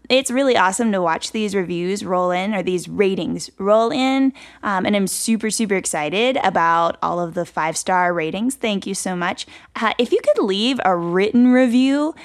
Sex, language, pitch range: female, English, 180-235 Hz